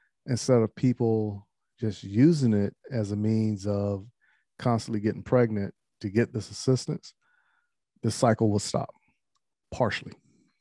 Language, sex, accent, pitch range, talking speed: English, male, American, 100-115 Hz, 125 wpm